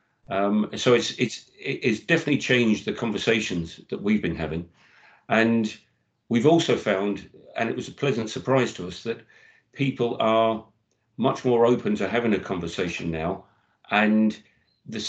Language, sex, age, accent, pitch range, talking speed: English, male, 50-69, British, 100-120 Hz, 150 wpm